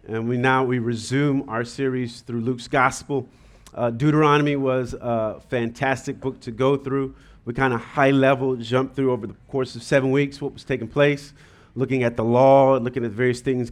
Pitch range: 120-140 Hz